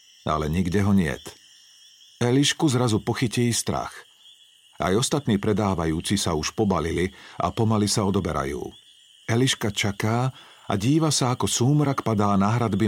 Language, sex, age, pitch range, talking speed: Slovak, male, 50-69, 110-160 Hz, 130 wpm